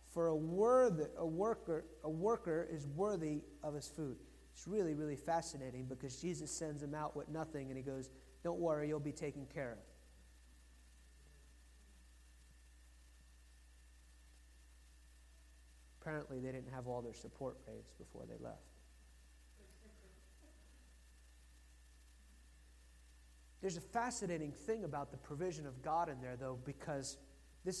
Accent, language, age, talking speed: American, English, 30-49, 120 wpm